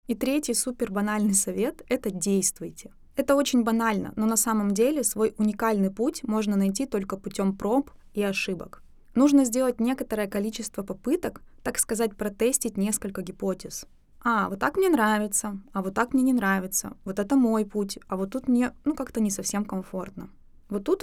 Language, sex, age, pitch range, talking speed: Russian, female, 20-39, 195-240 Hz, 170 wpm